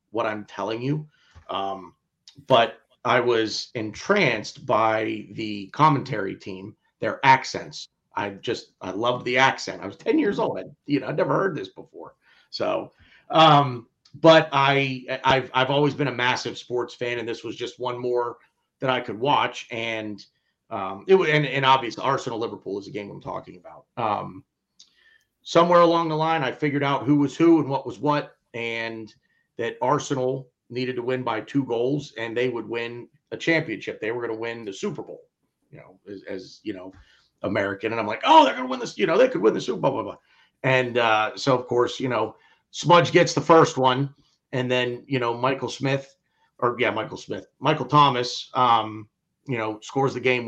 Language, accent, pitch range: English, American, 115-145 Hz